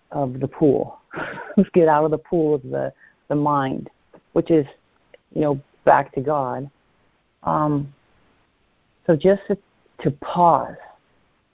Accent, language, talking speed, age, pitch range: American, English, 135 wpm, 40-59, 145-165 Hz